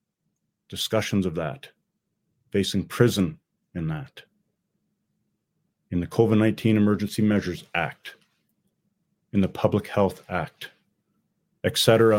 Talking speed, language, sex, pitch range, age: 95 wpm, English, male, 105-145 Hz, 40-59